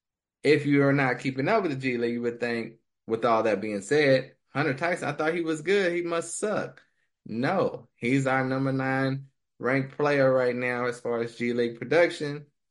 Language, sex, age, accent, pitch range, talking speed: English, male, 20-39, American, 110-145 Hz, 205 wpm